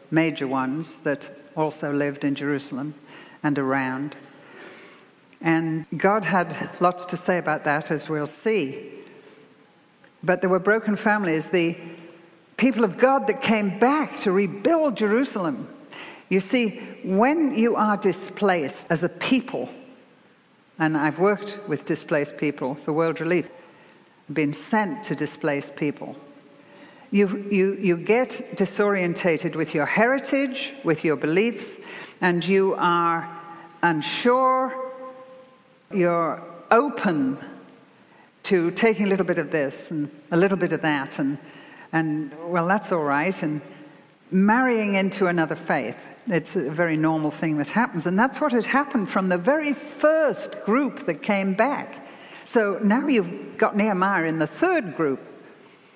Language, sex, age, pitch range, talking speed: English, female, 60-79, 155-220 Hz, 135 wpm